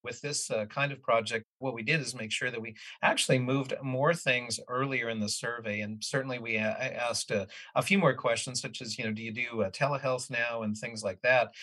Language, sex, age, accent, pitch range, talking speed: English, male, 50-69, American, 110-135 Hz, 235 wpm